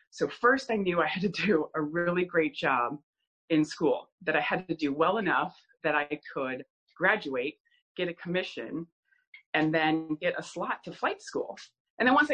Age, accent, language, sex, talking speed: 30-49, American, English, female, 190 wpm